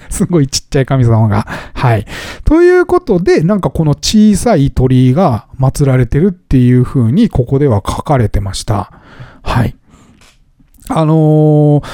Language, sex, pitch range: Japanese, male, 125-180 Hz